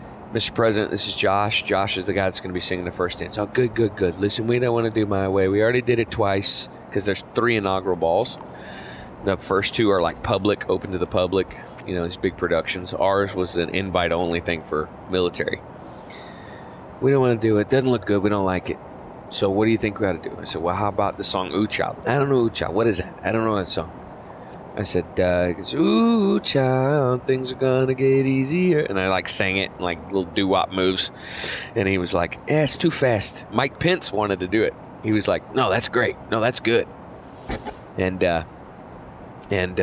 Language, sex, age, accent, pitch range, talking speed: English, male, 30-49, American, 95-120 Hz, 230 wpm